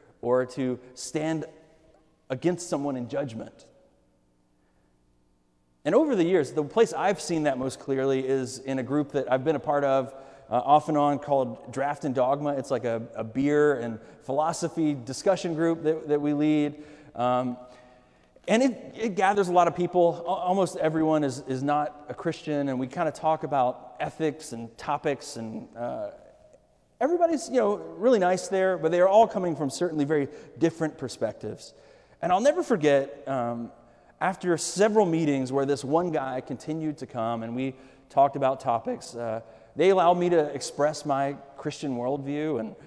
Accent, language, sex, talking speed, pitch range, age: American, English, male, 170 wpm, 135-180 Hz, 30-49